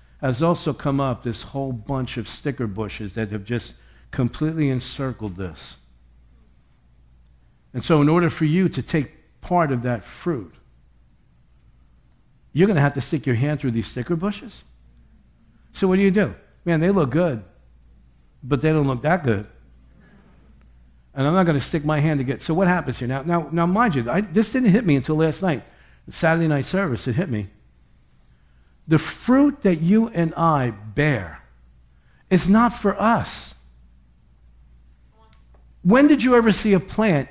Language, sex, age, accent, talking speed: English, male, 60-79, American, 170 wpm